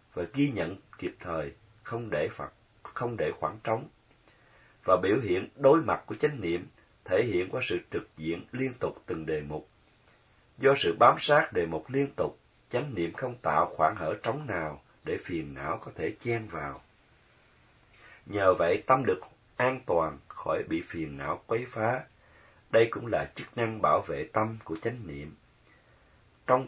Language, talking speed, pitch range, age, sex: Vietnamese, 175 wpm, 90-130 Hz, 30-49, male